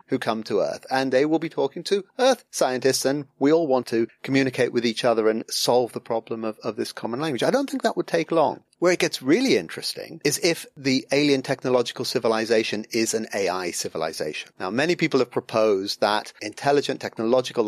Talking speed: 205 wpm